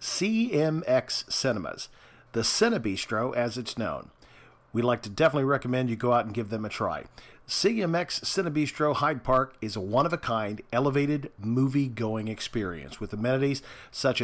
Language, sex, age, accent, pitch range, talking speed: English, male, 50-69, American, 115-145 Hz, 145 wpm